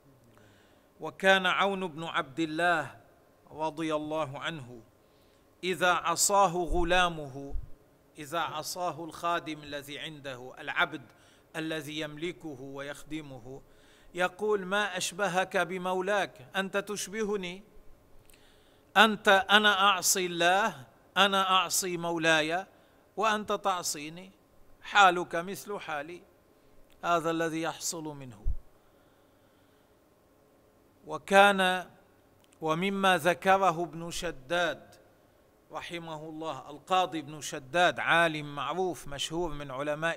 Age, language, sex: 40-59, Arabic, male